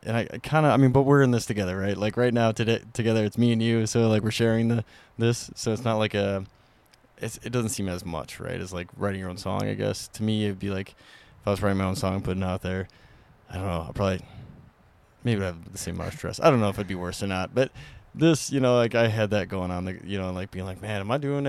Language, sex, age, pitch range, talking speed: English, male, 20-39, 95-115 Hz, 290 wpm